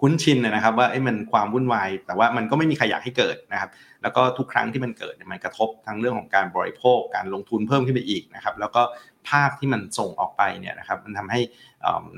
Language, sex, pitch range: Thai, male, 100-130 Hz